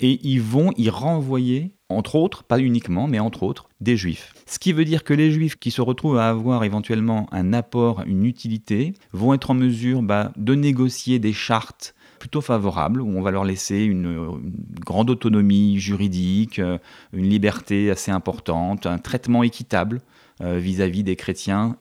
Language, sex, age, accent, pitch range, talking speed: French, male, 30-49, French, 100-130 Hz, 170 wpm